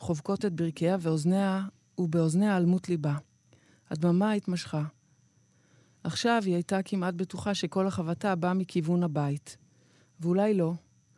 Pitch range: 160-190 Hz